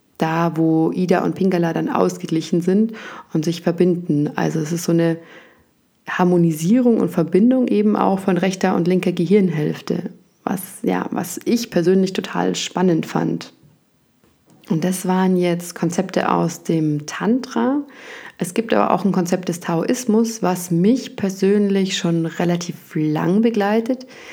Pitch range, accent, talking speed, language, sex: 165-210 Hz, German, 140 wpm, German, female